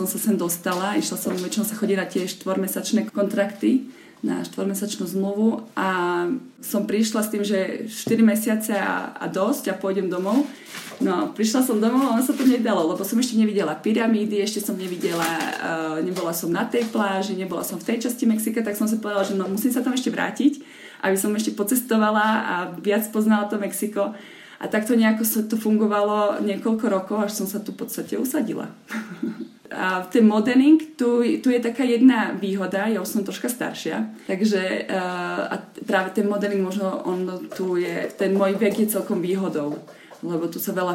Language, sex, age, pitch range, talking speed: Slovak, female, 20-39, 185-220 Hz, 180 wpm